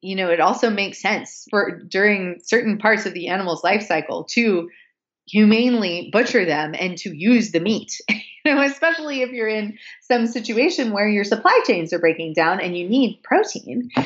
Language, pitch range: English, 175-225 Hz